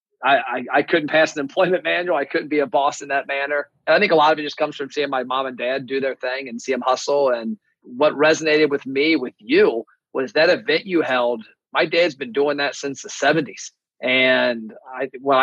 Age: 30-49